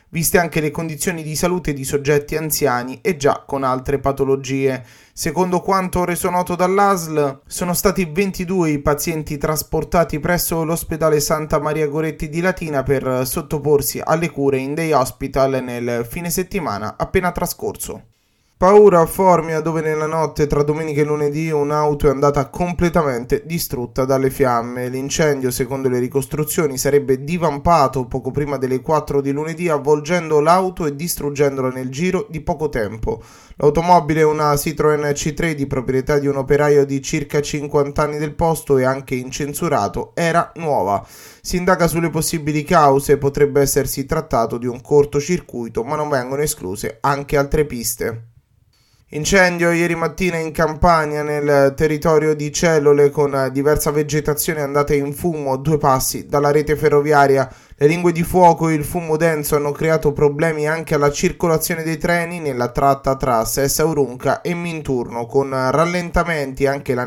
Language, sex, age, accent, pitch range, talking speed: Italian, male, 20-39, native, 135-165 Hz, 150 wpm